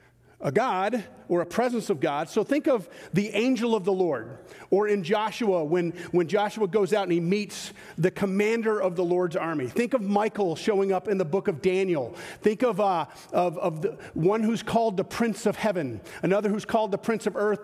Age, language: 40-59, English